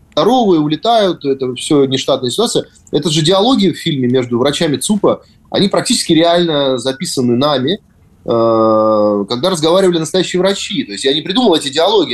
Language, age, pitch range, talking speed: Russian, 30-49, 140-195 Hz, 155 wpm